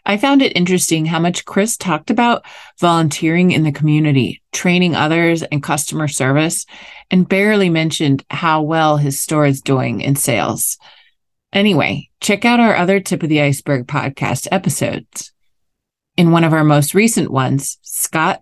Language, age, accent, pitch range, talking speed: English, 30-49, American, 150-185 Hz, 155 wpm